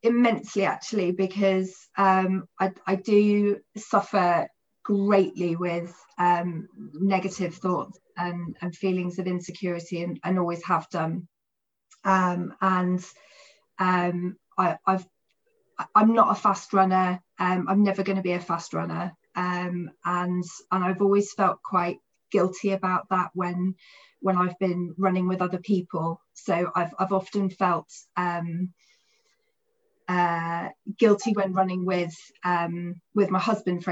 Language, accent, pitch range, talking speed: English, British, 180-200 Hz, 135 wpm